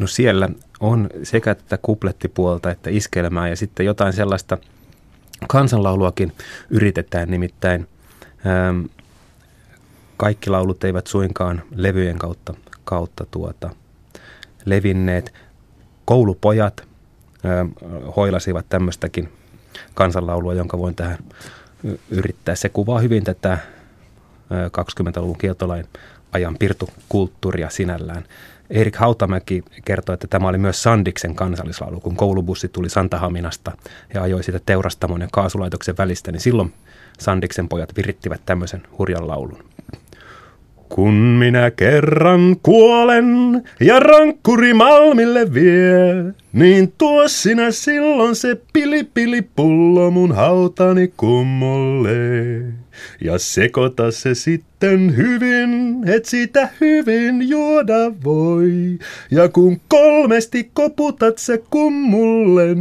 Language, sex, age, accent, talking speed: Finnish, male, 30-49, native, 95 wpm